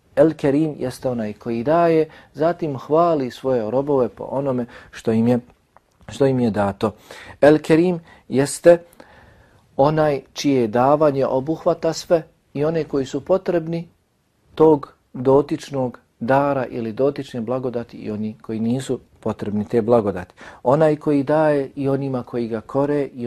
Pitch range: 125-155 Hz